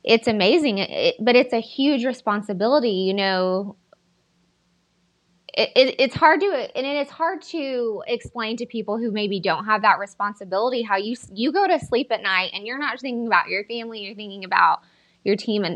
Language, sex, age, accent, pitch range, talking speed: English, female, 20-39, American, 195-250 Hz, 185 wpm